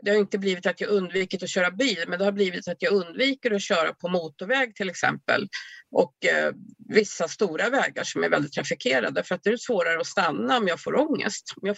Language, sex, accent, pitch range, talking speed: Swedish, female, native, 185-235 Hz, 230 wpm